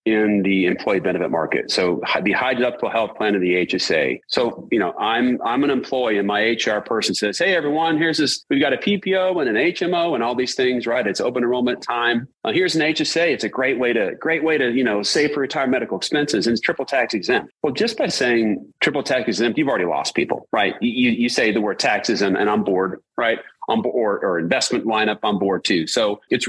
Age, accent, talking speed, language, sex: 40-59, American, 235 wpm, English, male